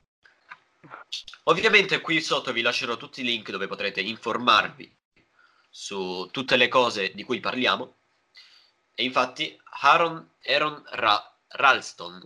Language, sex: Italian, male